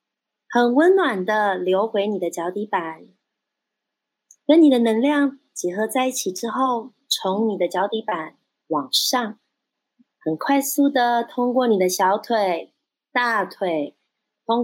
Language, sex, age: Chinese, female, 30-49